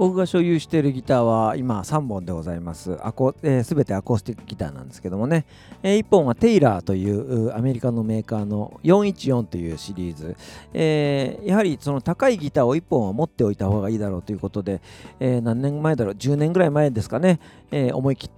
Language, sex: Japanese, male